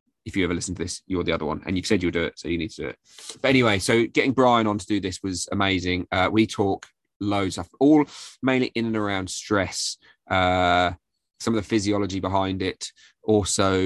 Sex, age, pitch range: male, 20-39, 90-110 Hz